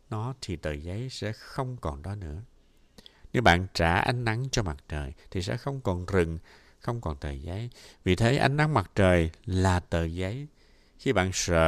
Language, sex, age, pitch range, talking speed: Vietnamese, male, 60-79, 85-125 Hz, 195 wpm